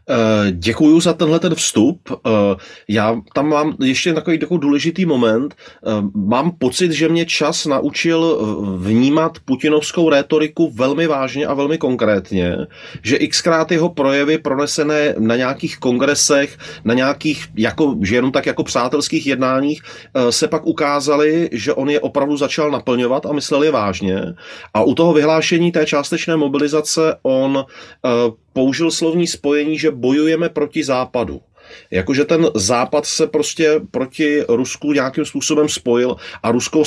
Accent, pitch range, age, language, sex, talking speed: native, 120-155 Hz, 30-49, Czech, male, 140 wpm